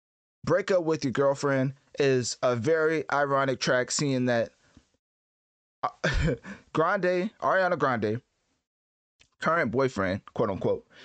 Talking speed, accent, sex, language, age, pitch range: 105 wpm, American, male, English, 20-39, 120-155 Hz